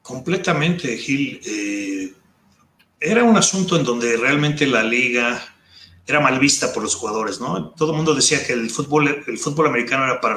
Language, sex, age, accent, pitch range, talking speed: Spanish, male, 30-49, Mexican, 125-160 Hz, 175 wpm